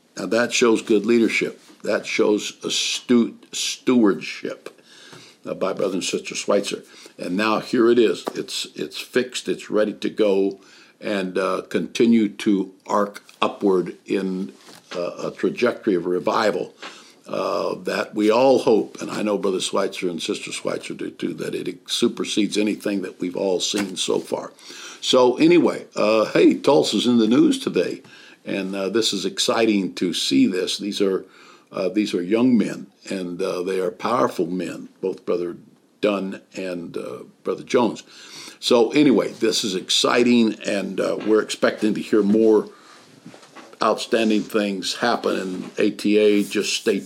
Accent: American